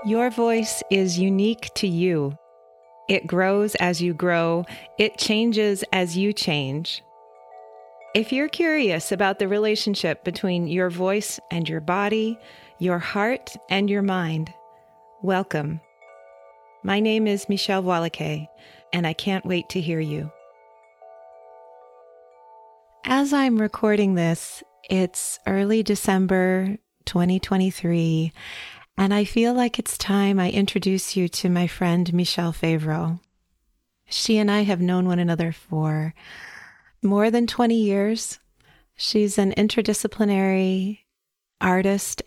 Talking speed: 120 wpm